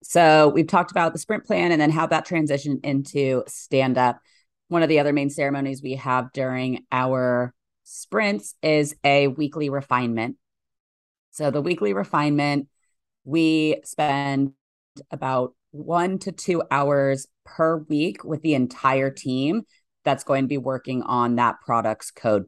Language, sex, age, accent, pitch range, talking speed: English, female, 30-49, American, 125-155 Hz, 145 wpm